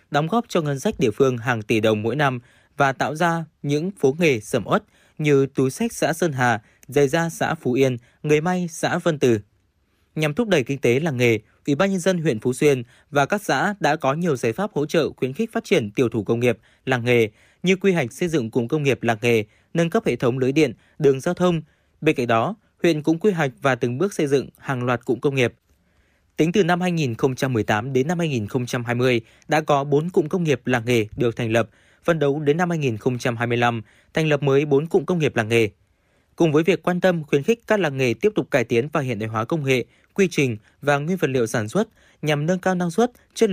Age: 20-39